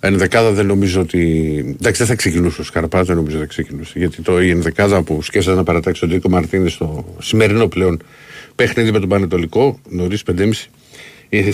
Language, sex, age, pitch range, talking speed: Greek, male, 50-69, 85-100 Hz, 175 wpm